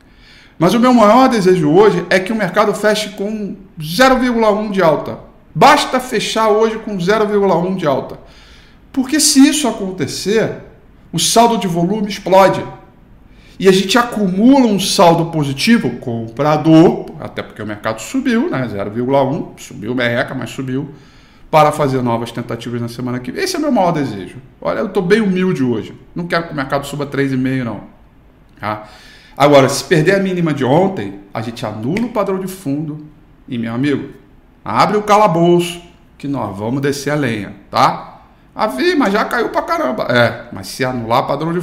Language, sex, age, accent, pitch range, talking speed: Portuguese, male, 50-69, Brazilian, 130-200 Hz, 175 wpm